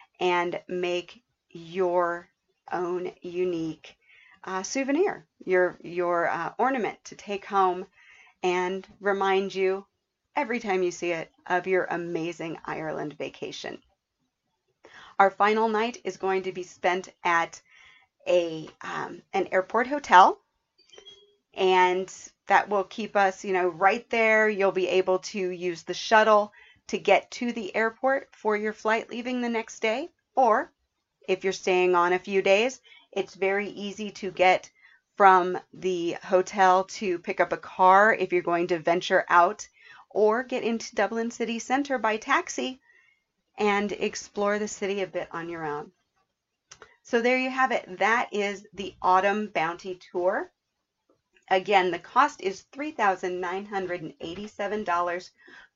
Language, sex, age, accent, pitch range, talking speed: English, female, 40-59, American, 180-220 Hz, 145 wpm